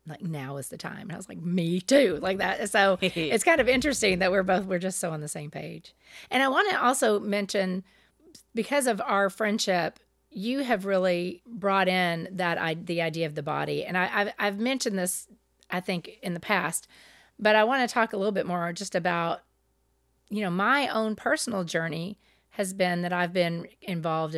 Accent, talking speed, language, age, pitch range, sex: American, 200 wpm, English, 40-59, 175-220 Hz, female